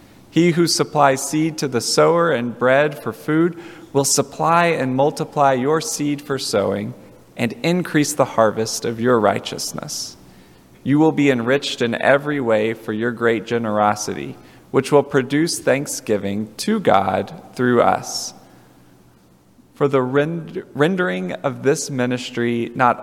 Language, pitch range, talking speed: English, 110-150 Hz, 135 wpm